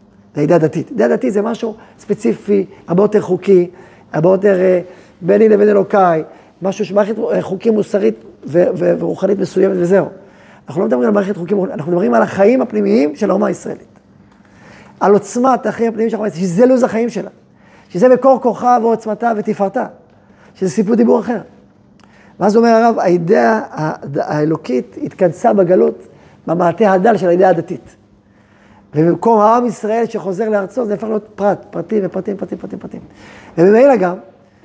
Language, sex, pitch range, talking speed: Hebrew, male, 170-215 Hz, 140 wpm